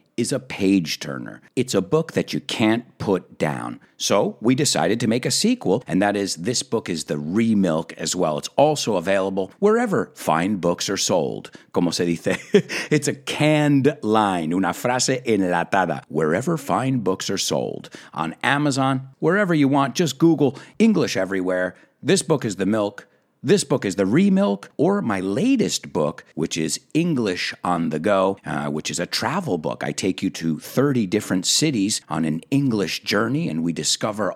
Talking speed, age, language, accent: 175 wpm, 50-69, English, American